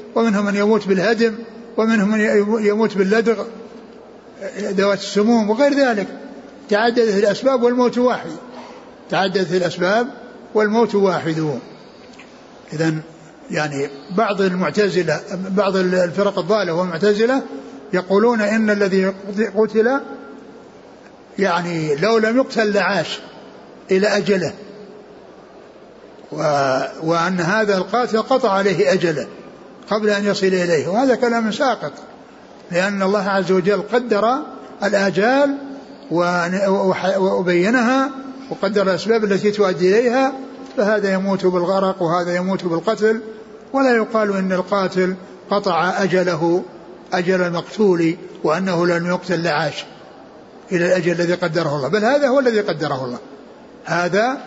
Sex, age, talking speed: male, 60-79, 105 wpm